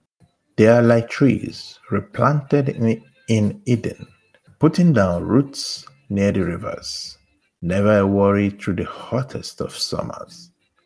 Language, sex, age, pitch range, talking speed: English, male, 50-69, 100-140 Hz, 120 wpm